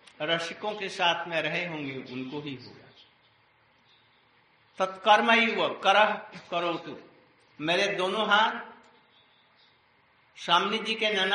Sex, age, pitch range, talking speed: male, 60-79, 160-205 Hz, 75 wpm